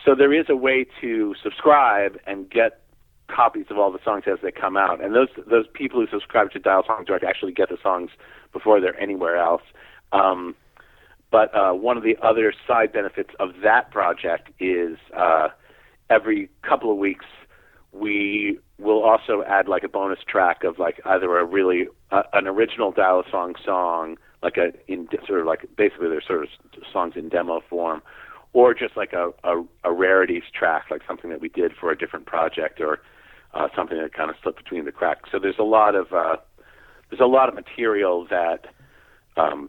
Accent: American